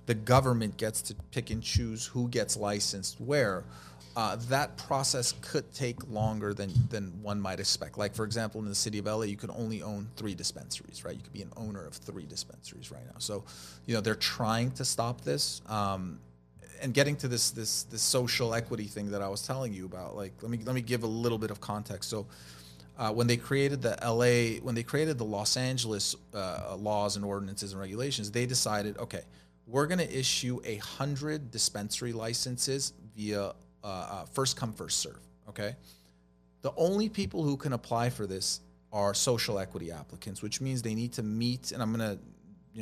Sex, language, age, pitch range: male, English, 30-49, 100-125 Hz